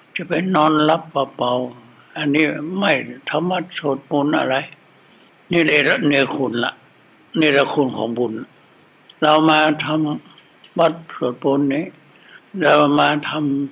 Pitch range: 140-165 Hz